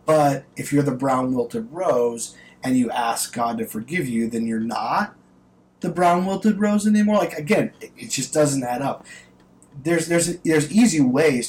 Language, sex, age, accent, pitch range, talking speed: English, male, 20-39, American, 115-170 Hz, 165 wpm